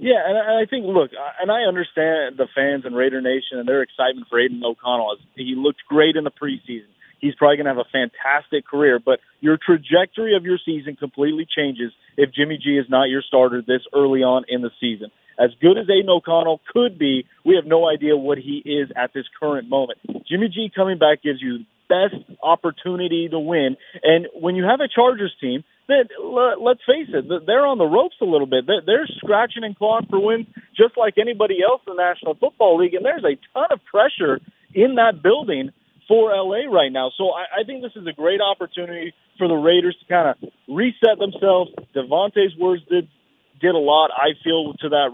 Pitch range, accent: 140-195 Hz, American